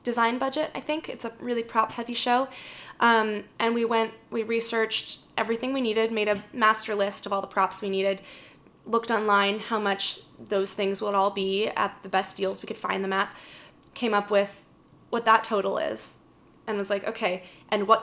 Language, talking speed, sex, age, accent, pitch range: English, 195 wpm, female, 10-29, American, 200-230 Hz